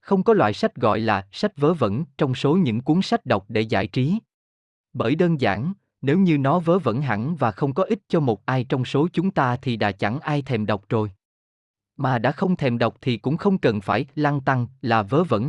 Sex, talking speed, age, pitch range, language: male, 235 wpm, 20-39, 110-160 Hz, Vietnamese